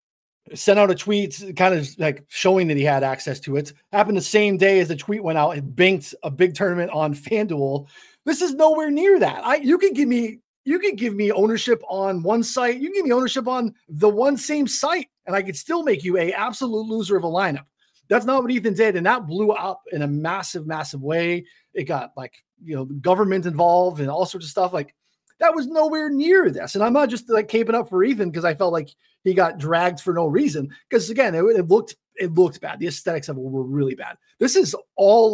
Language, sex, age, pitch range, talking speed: English, male, 30-49, 160-230 Hz, 235 wpm